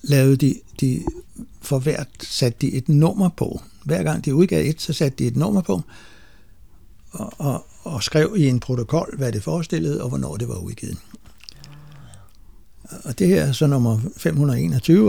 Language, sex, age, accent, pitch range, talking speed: Danish, male, 60-79, native, 110-150 Hz, 165 wpm